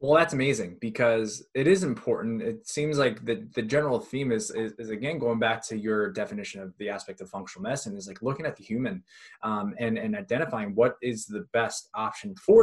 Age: 20-39